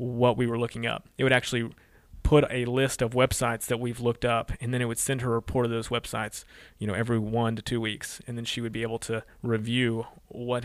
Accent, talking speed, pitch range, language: American, 250 wpm, 115-140 Hz, English